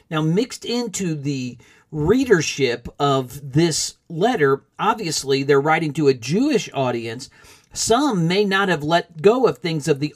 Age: 50-69